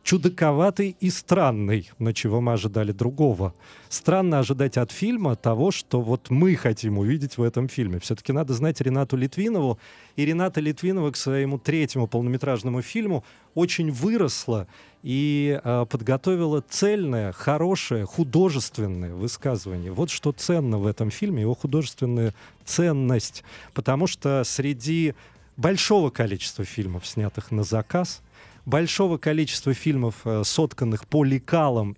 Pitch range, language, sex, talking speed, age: 115-155 Hz, Russian, male, 125 wpm, 30-49